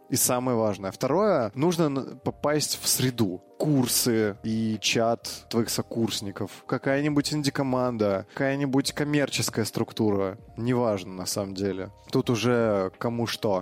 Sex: male